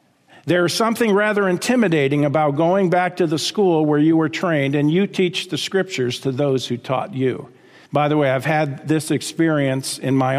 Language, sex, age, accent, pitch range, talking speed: English, male, 50-69, American, 150-210 Hz, 190 wpm